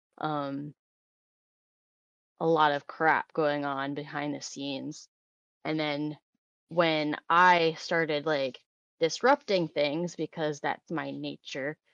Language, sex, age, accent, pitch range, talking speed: English, female, 20-39, American, 145-165 Hz, 110 wpm